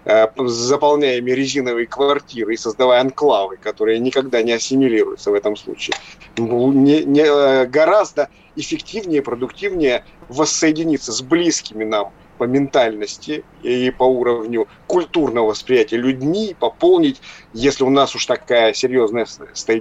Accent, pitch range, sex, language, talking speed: native, 125-200 Hz, male, Russian, 115 wpm